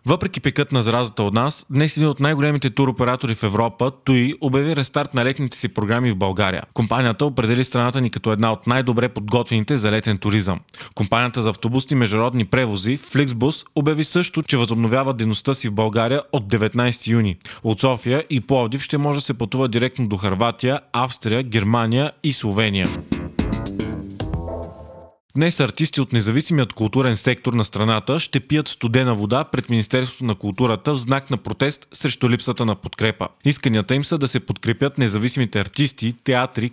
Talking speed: 165 wpm